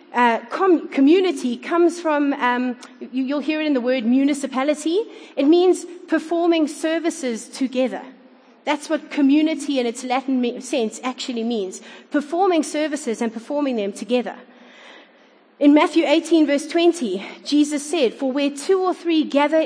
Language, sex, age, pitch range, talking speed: English, female, 30-49, 240-310 Hz, 135 wpm